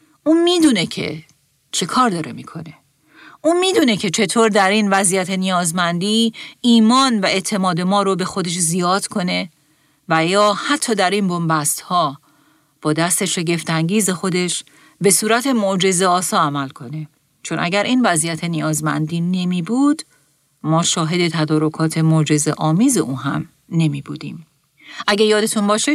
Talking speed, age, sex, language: 130 wpm, 40-59, female, Persian